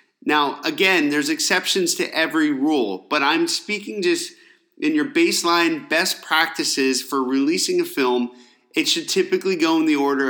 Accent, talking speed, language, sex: American, 155 wpm, English, male